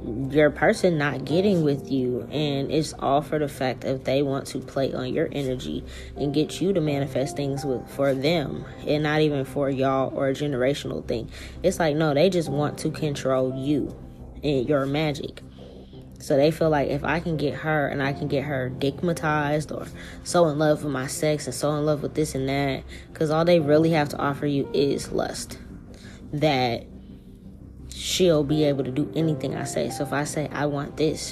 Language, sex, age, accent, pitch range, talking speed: English, female, 10-29, American, 135-155 Hz, 205 wpm